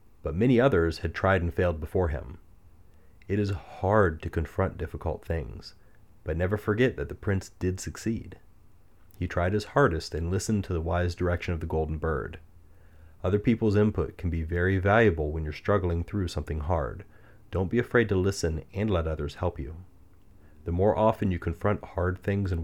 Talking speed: 185 wpm